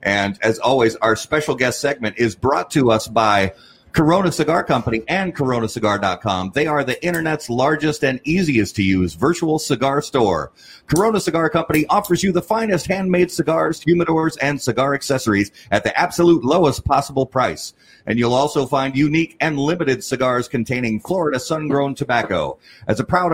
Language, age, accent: English, 40-59, American